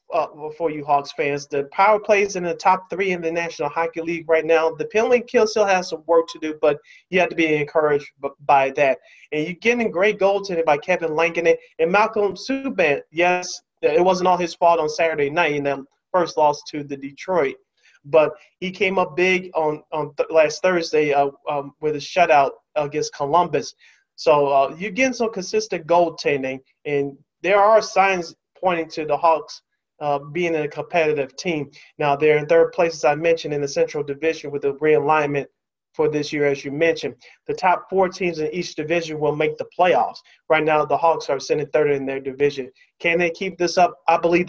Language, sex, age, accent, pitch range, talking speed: English, male, 30-49, American, 150-185 Hz, 200 wpm